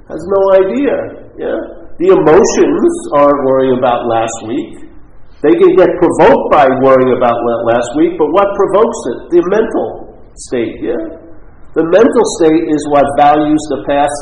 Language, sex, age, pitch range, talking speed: English, male, 50-69, 130-205 Hz, 155 wpm